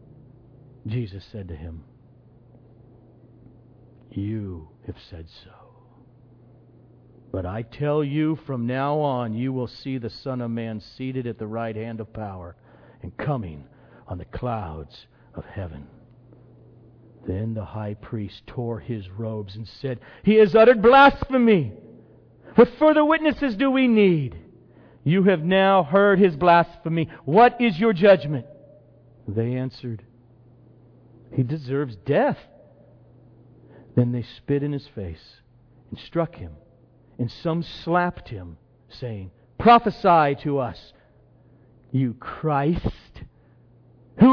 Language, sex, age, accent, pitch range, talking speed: English, male, 50-69, American, 115-145 Hz, 120 wpm